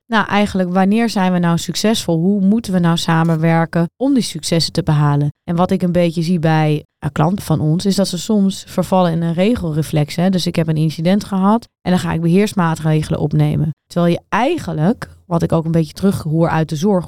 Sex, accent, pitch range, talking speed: female, Dutch, 165-220 Hz, 210 wpm